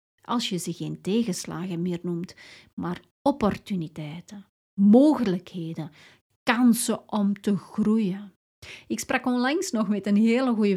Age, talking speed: 30-49, 125 wpm